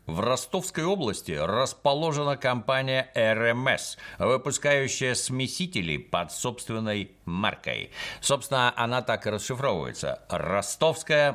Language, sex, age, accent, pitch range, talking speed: Russian, male, 50-69, native, 100-140 Hz, 90 wpm